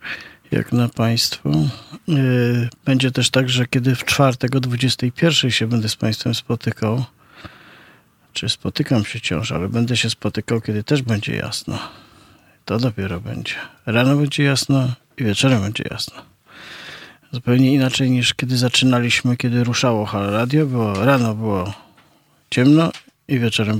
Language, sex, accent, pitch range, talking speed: Polish, male, native, 110-130 Hz, 135 wpm